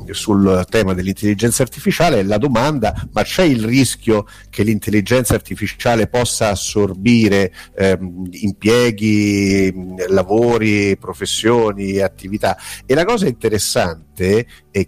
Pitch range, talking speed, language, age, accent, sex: 95-120 Hz, 100 wpm, Italian, 50-69, native, male